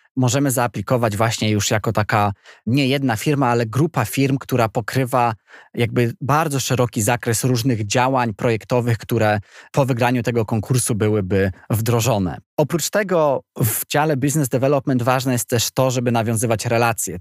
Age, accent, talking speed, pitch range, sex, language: 20-39, native, 145 wpm, 105-130 Hz, male, Polish